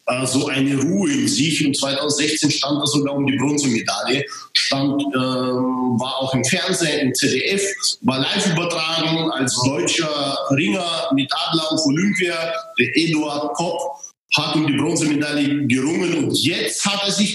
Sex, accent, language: male, German, German